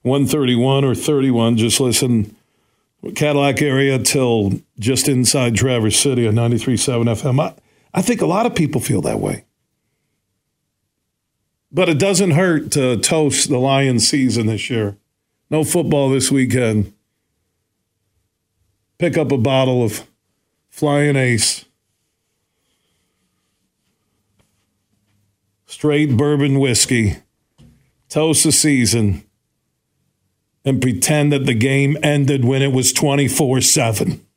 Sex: male